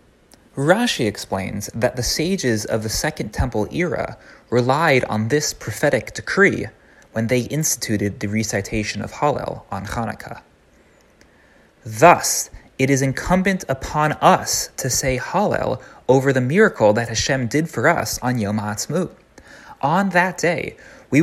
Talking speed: 135 wpm